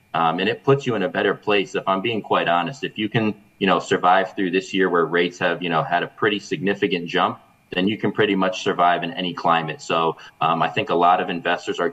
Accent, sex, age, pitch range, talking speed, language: American, male, 20-39, 85-95 Hz, 255 wpm, English